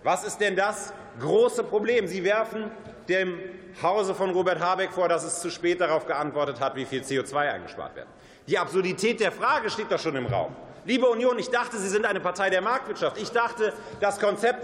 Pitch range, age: 185-230 Hz, 30-49